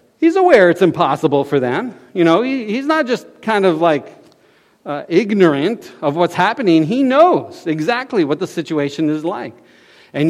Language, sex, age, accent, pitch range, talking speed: English, male, 50-69, American, 135-210 Hz, 165 wpm